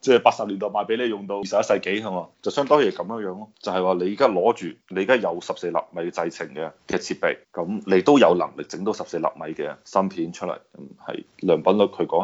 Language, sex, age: Chinese, male, 20-39